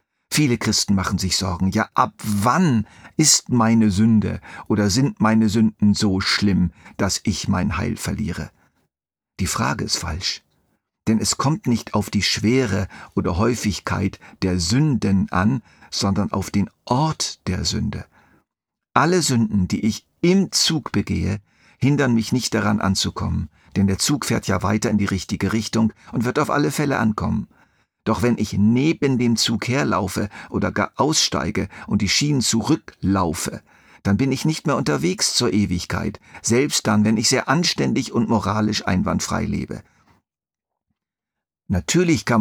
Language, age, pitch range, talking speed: German, 50-69, 100-120 Hz, 150 wpm